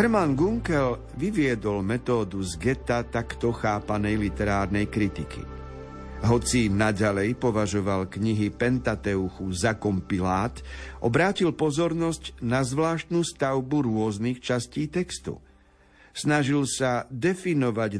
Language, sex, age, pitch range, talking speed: Slovak, male, 50-69, 105-140 Hz, 95 wpm